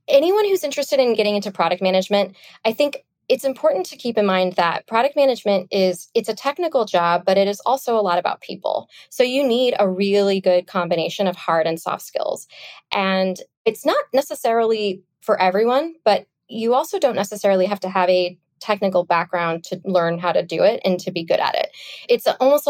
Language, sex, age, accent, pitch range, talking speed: English, female, 20-39, American, 185-240 Hz, 200 wpm